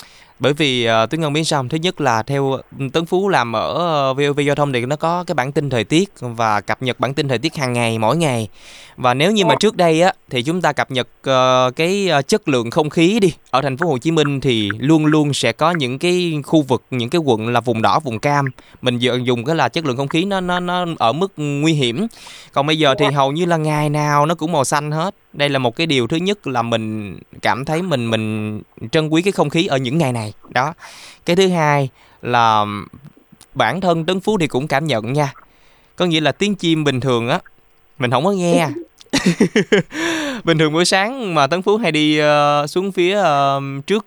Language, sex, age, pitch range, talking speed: Vietnamese, male, 20-39, 125-170 Hz, 225 wpm